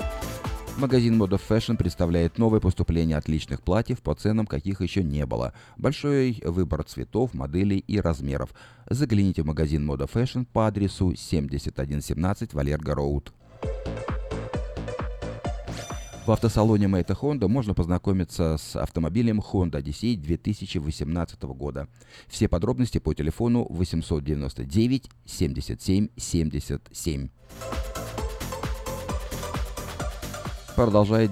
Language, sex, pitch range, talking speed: Russian, male, 80-110 Hz, 90 wpm